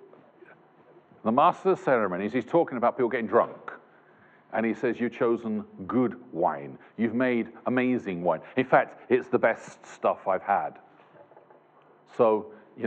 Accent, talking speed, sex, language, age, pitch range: British, 140 wpm, male, English, 50-69, 115-145 Hz